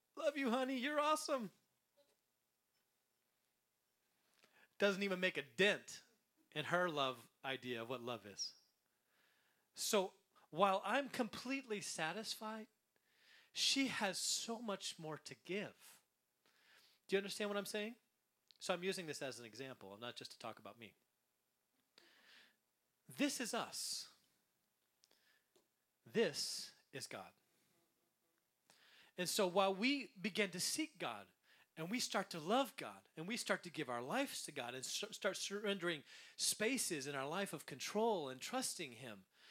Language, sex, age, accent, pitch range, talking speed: English, male, 30-49, American, 170-245 Hz, 135 wpm